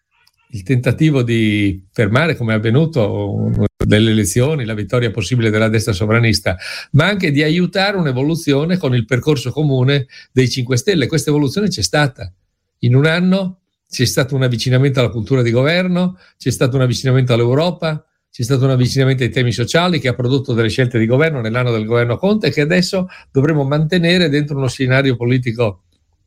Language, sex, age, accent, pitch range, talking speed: Italian, male, 60-79, native, 120-155 Hz, 165 wpm